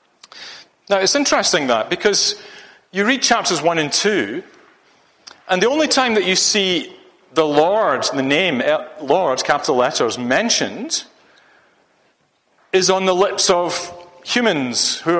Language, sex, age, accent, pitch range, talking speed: English, male, 40-59, British, 165-250 Hz, 130 wpm